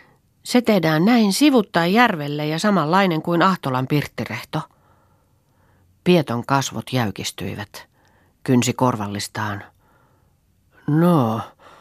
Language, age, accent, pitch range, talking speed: Finnish, 40-59, native, 115-145 Hz, 80 wpm